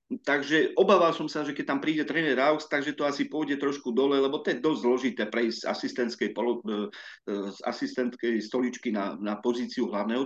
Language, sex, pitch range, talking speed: Slovak, male, 115-165 Hz, 175 wpm